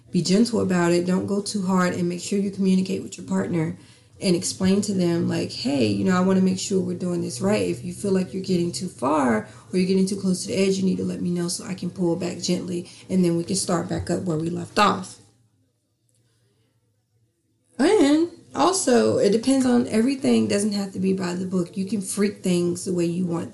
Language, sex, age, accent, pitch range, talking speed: English, female, 30-49, American, 155-205 Hz, 235 wpm